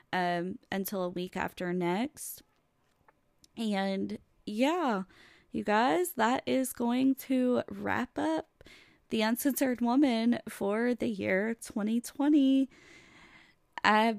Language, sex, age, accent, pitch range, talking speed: English, female, 20-39, American, 180-235 Hz, 105 wpm